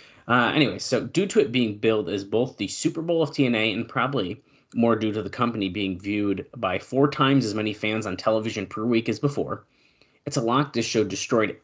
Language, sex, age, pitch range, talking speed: English, male, 20-39, 100-130 Hz, 215 wpm